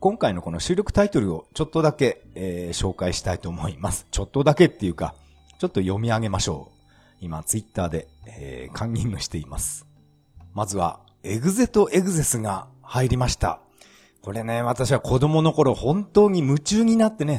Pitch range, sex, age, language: 95-150 Hz, male, 40-59, Japanese